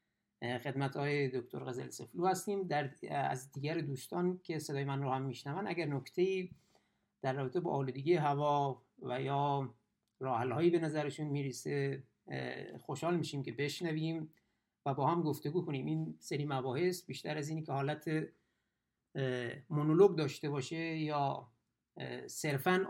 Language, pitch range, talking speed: Persian, 135-170 Hz, 135 wpm